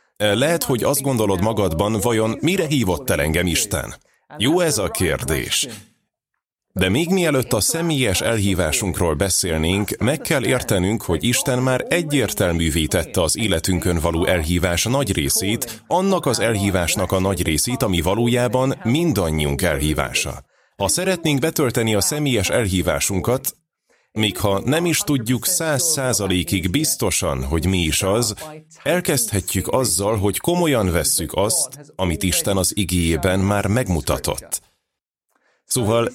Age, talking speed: 30-49, 130 wpm